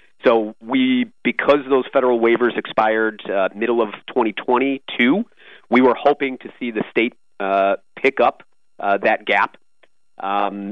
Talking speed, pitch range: 140 wpm, 100-130 Hz